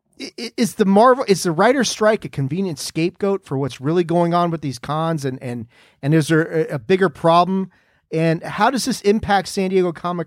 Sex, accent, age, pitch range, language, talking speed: male, American, 40-59, 140-190 Hz, English, 200 wpm